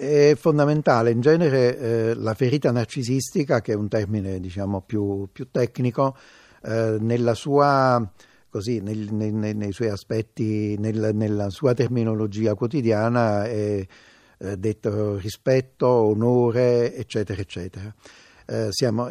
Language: Italian